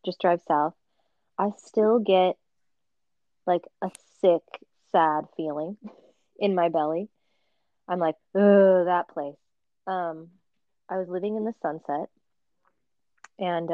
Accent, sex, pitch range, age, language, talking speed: American, female, 170-210 Hz, 20-39, English, 120 wpm